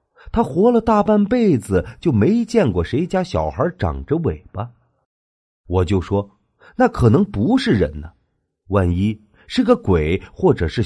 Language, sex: Chinese, male